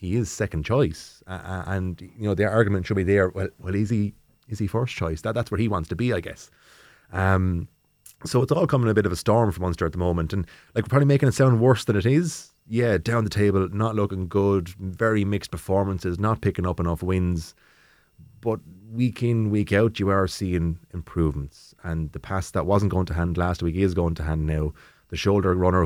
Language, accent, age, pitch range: English, Irish, 30-49, 85-105 Hz